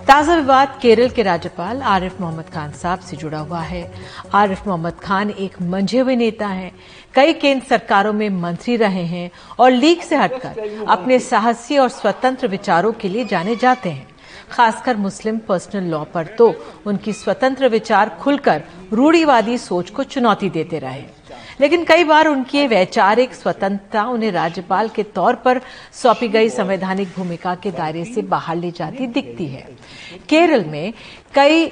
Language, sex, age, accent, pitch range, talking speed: Hindi, female, 50-69, native, 180-250 Hz, 160 wpm